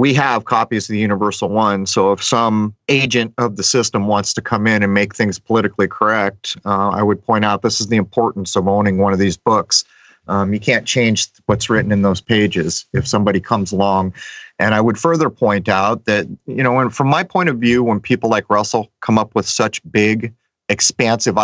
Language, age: English, 40-59